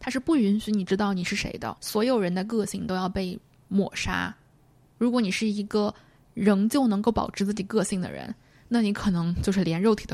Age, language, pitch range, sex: 10-29, Chinese, 180-220 Hz, female